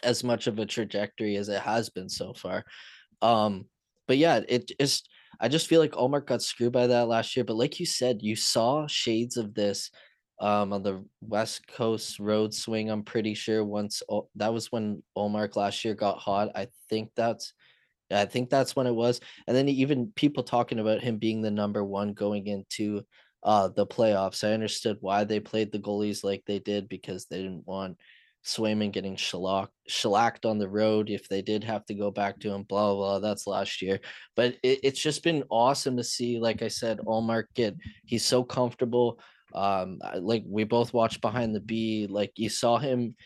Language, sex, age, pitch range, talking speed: English, male, 20-39, 105-120 Hz, 200 wpm